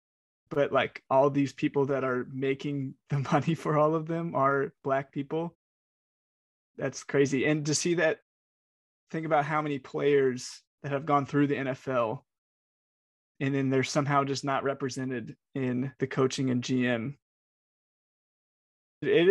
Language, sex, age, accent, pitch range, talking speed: English, male, 20-39, American, 135-150 Hz, 145 wpm